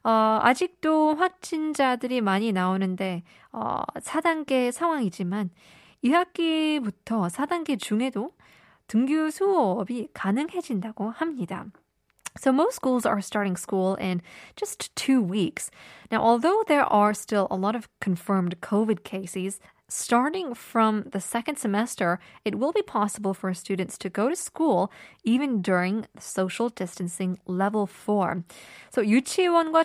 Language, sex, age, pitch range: Korean, female, 20-39, 190-255 Hz